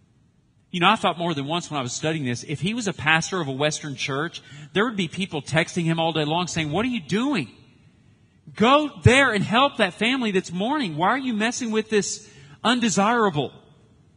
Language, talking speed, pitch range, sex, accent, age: English, 210 wpm, 135-195 Hz, male, American, 40-59